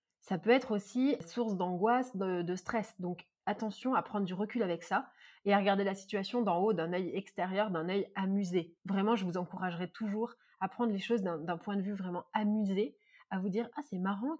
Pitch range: 185-225 Hz